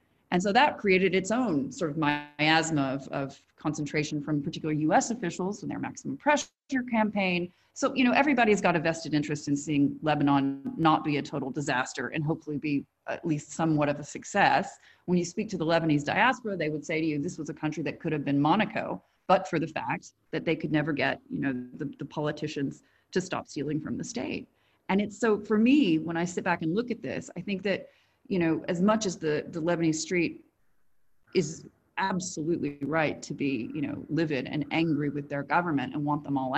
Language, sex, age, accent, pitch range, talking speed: English, female, 30-49, American, 150-185 Hz, 210 wpm